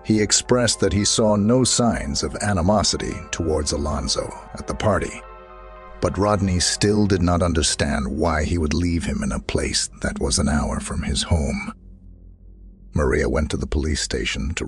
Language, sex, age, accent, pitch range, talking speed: English, male, 50-69, American, 75-100 Hz, 170 wpm